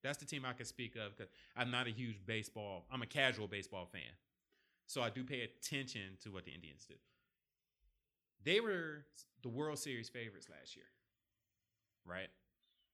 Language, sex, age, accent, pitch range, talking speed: English, male, 30-49, American, 100-130 Hz, 170 wpm